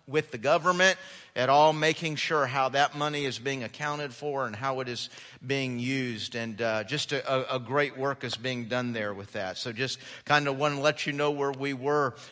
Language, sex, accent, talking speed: English, male, American, 220 wpm